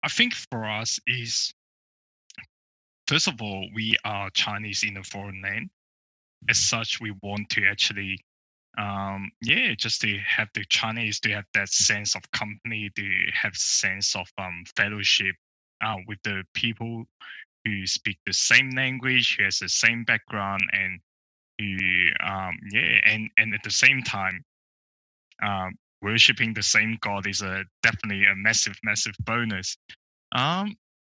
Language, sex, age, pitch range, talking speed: English, male, 10-29, 95-110 Hz, 150 wpm